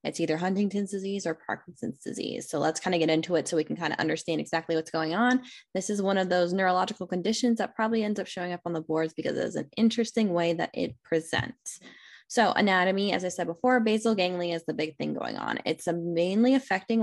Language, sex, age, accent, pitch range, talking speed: English, female, 10-29, American, 165-220 Hz, 230 wpm